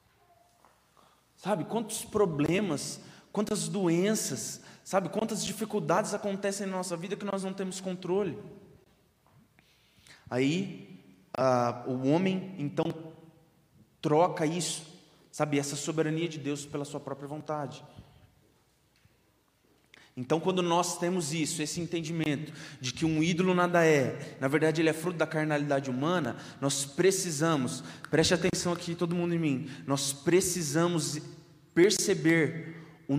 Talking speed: 120 wpm